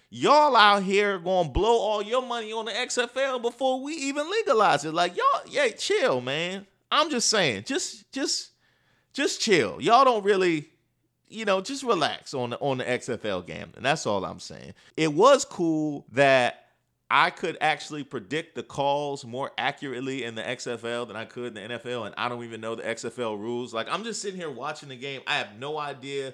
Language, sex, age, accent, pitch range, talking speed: English, male, 30-49, American, 130-200 Hz, 200 wpm